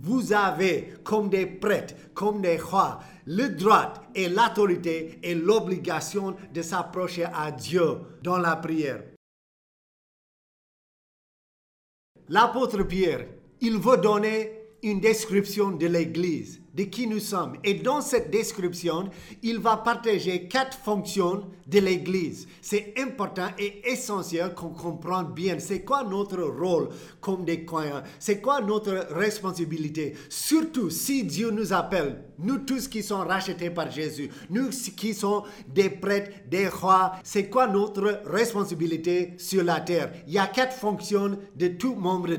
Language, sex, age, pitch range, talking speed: French, male, 50-69, 175-210 Hz, 135 wpm